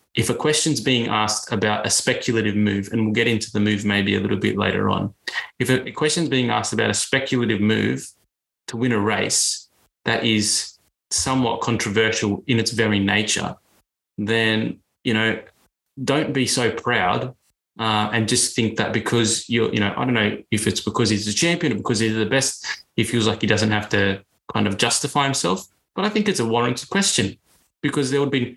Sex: male